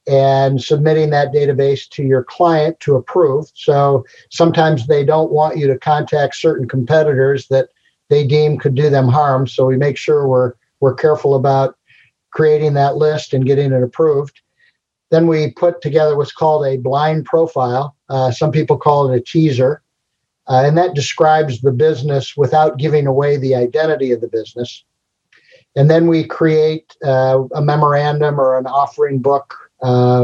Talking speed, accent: 165 wpm, American